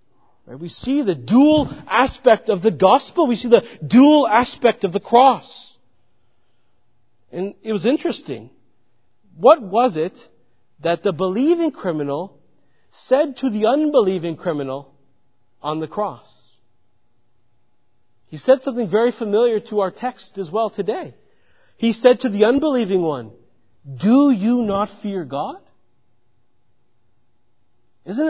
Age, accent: 40-59, American